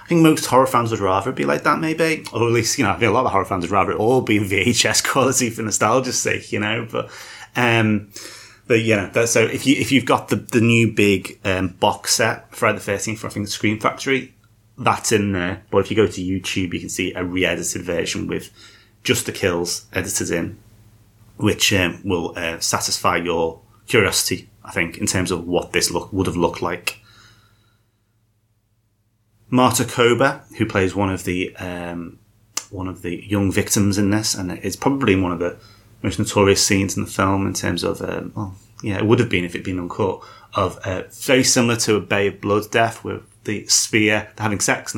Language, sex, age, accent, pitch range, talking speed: English, male, 30-49, British, 95-115 Hz, 215 wpm